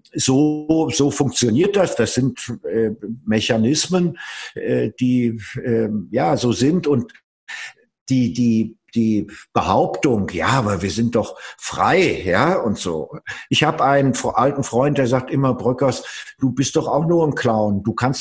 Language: German